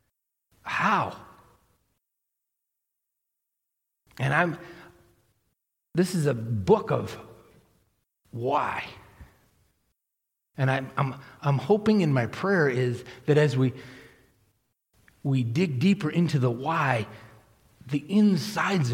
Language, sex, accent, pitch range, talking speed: English, male, American, 120-155 Hz, 90 wpm